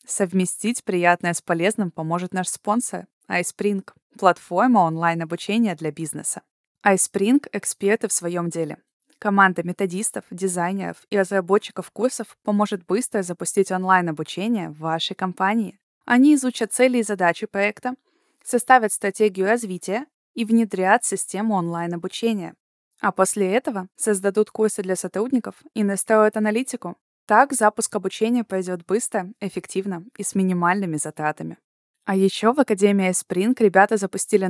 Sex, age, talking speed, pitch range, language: female, 20-39, 120 wpm, 180-220 Hz, Russian